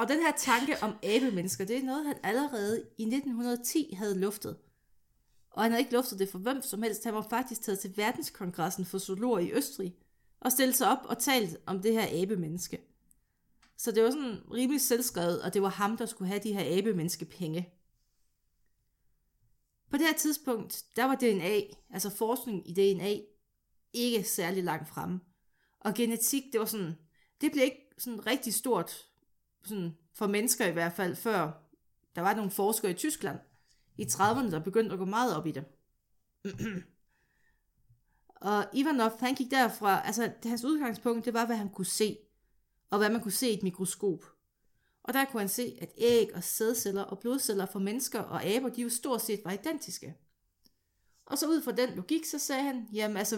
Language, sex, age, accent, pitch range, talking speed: Danish, female, 30-49, native, 195-245 Hz, 185 wpm